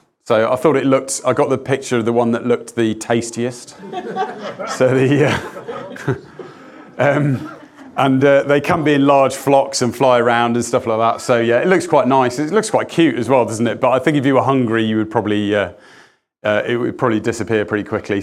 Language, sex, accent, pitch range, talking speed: English, male, British, 115-135 Hz, 220 wpm